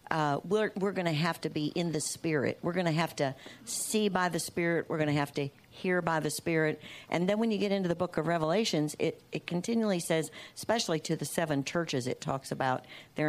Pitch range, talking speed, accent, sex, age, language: 150-180 Hz, 235 wpm, American, female, 60-79, English